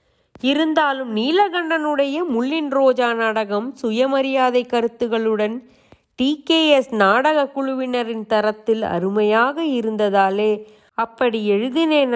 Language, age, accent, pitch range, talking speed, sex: Tamil, 30-49, native, 210-270 Hz, 70 wpm, female